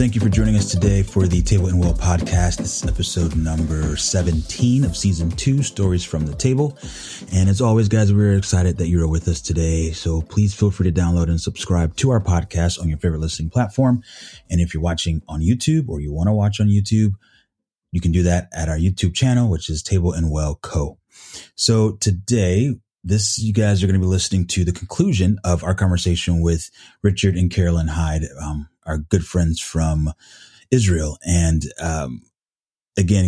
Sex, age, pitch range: male, 30-49, 80-100 Hz